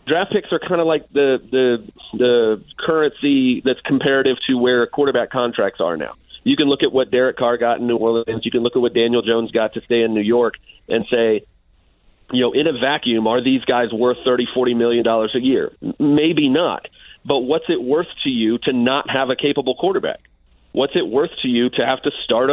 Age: 40-59